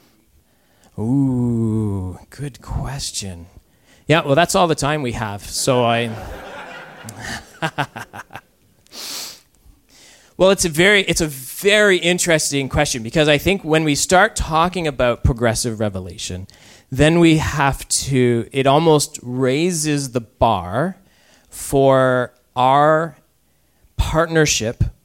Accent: American